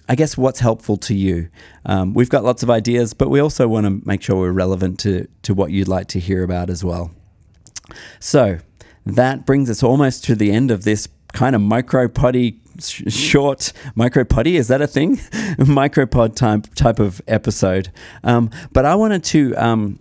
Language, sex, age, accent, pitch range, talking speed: English, male, 30-49, Australian, 105-135 Hz, 195 wpm